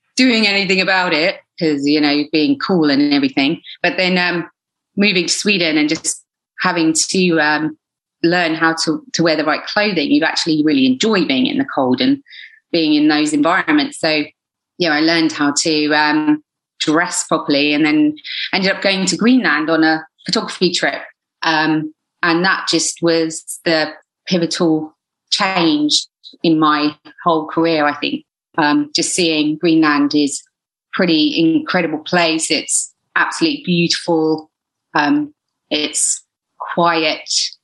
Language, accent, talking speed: English, British, 150 wpm